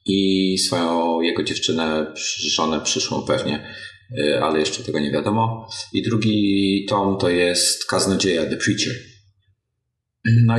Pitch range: 95-115 Hz